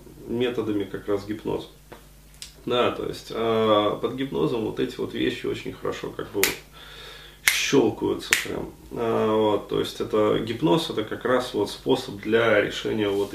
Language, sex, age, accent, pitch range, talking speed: Russian, male, 20-39, native, 105-135 Hz, 155 wpm